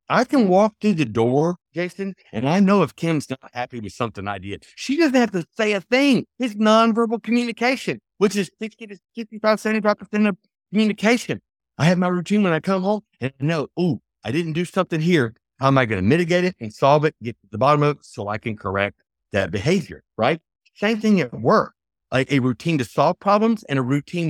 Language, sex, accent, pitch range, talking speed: English, male, American, 115-185 Hz, 215 wpm